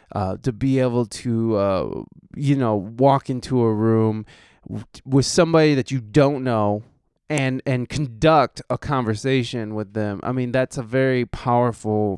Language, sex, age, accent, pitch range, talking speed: English, male, 20-39, American, 115-155 Hz, 155 wpm